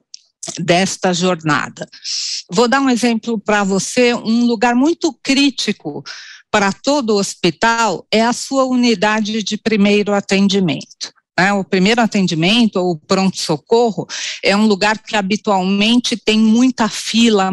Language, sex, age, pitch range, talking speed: Portuguese, female, 50-69, 185-230 Hz, 125 wpm